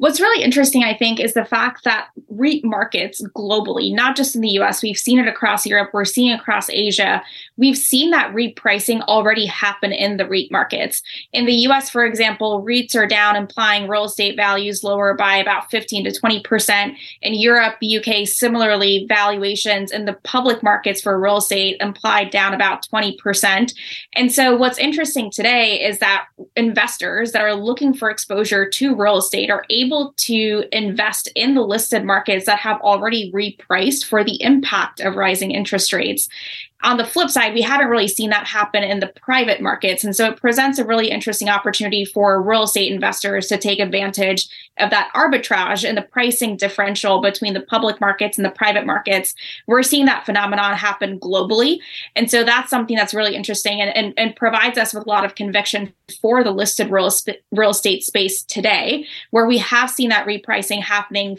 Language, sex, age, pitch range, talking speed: English, female, 20-39, 200-235 Hz, 185 wpm